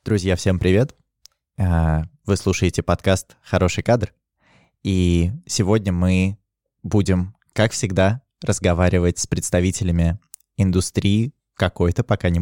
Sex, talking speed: male, 100 wpm